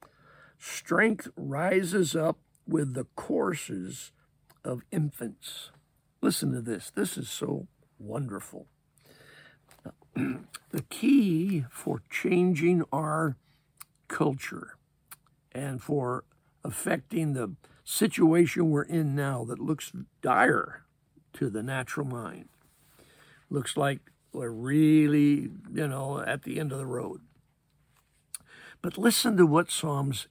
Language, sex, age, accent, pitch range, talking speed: English, male, 60-79, American, 135-165 Hz, 105 wpm